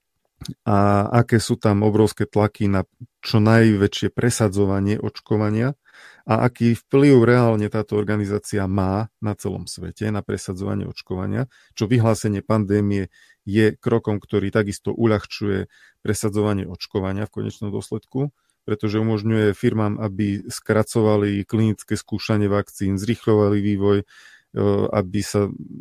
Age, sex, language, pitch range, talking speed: 40-59, male, Slovak, 100-110 Hz, 115 wpm